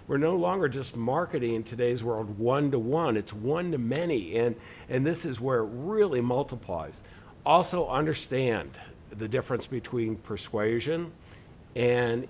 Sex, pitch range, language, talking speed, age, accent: male, 115-150 Hz, English, 135 wpm, 50-69, American